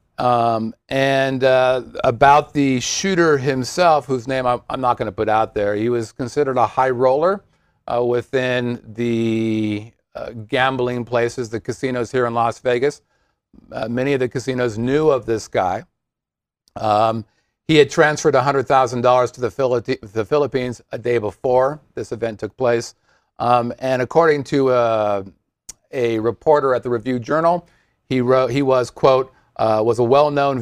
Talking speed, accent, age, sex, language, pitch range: 150 wpm, American, 50-69, male, English, 115-135 Hz